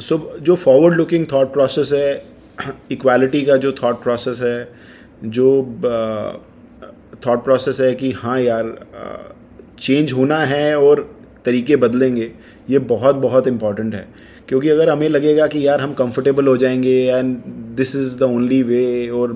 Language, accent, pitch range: Hindi, native, 120-135 Hz